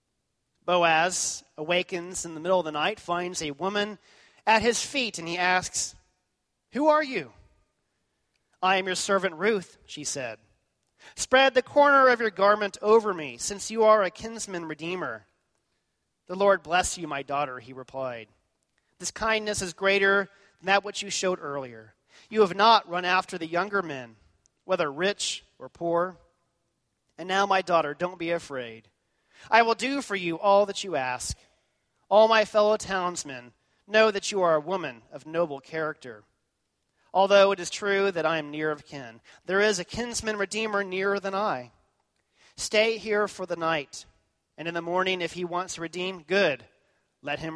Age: 40-59